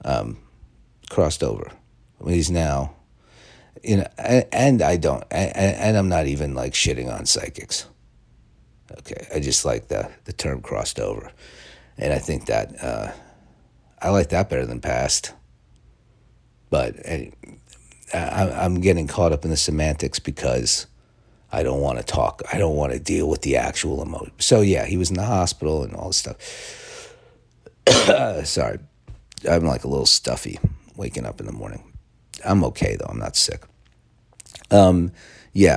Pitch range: 70-90 Hz